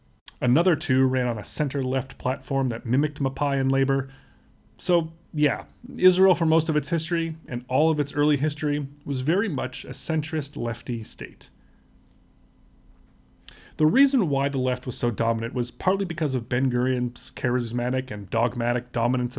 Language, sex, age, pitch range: English, male, 30-49, 125-155 Hz